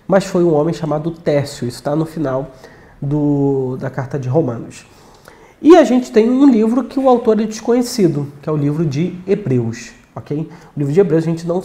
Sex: male